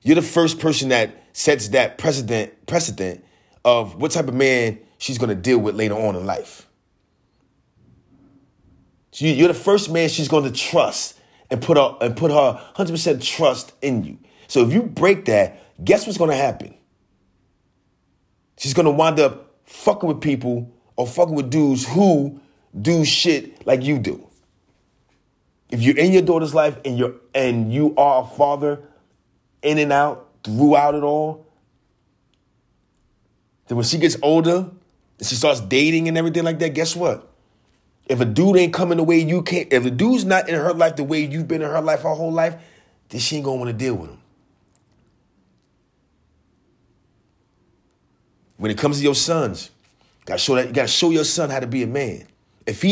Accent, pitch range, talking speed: American, 125-165 Hz, 180 wpm